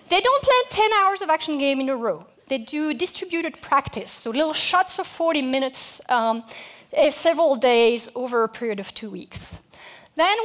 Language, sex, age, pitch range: Korean, female, 40-59, 240-335 Hz